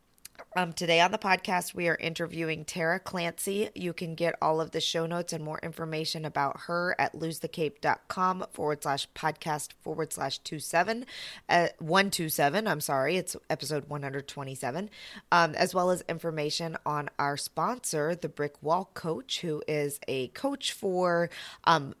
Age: 20-39